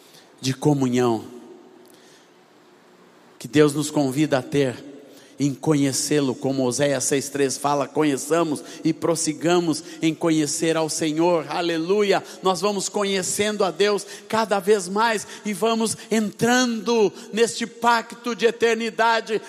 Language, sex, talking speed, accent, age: Portuguese, male, 115 wpm, Brazilian, 50-69